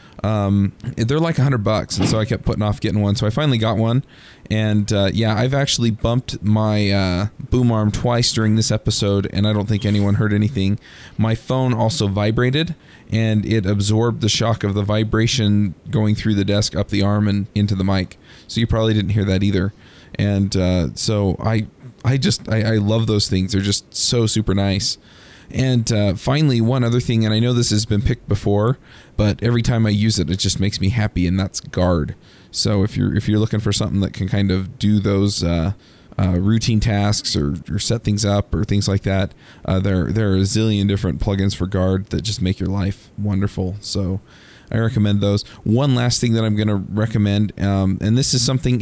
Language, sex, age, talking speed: English, male, 20-39, 215 wpm